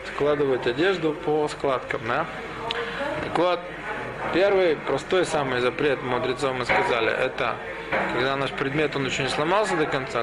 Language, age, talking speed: Russian, 20-39, 140 wpm